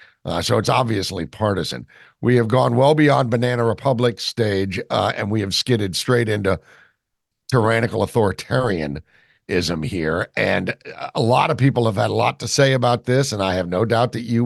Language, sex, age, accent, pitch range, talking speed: English, male, 60-79, American, 115-140 Hz, 180 wpm